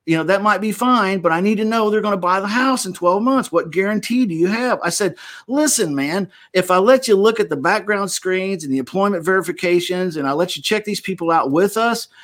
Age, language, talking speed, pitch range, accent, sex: 50-69, English, 255 wpm, 150-215 Hz, American, male